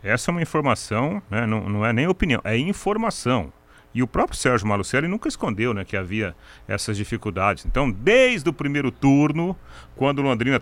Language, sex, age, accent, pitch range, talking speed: Portuguese, male, 40-59, Brazilian, 105-150 Hz, 180 wpm